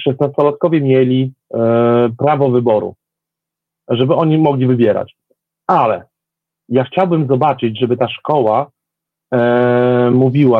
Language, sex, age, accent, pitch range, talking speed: Polish, male, 40-59, native, 125-160 Hz, 100 wpm